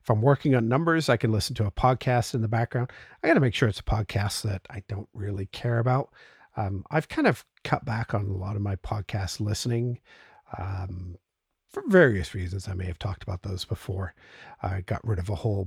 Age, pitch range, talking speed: 50-69, 100-125 Hz, 220 wpm